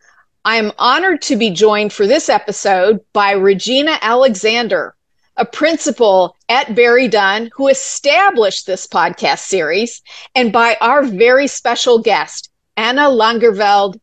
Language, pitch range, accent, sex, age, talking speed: English, 215-275 Hz, American, female, 40-59, 130 wpm